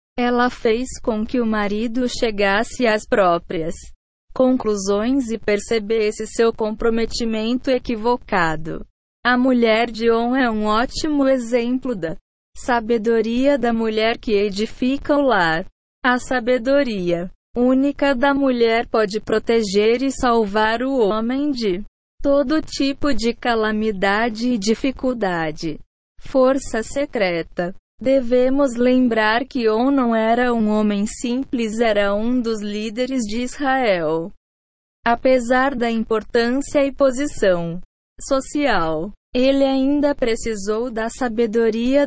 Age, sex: 20-39, female